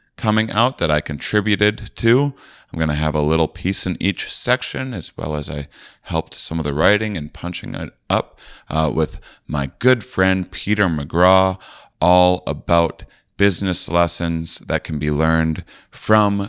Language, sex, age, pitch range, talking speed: English, male, 30-49, 80-105 Hz, 160 wpm